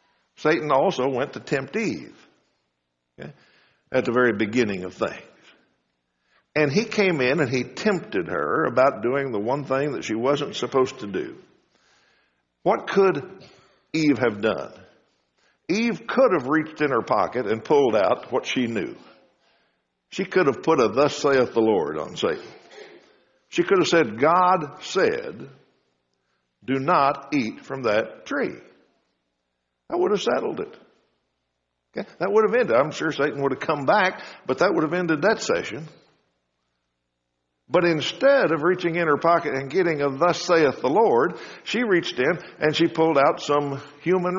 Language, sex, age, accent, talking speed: English, male, 60-79, American, 160 wpm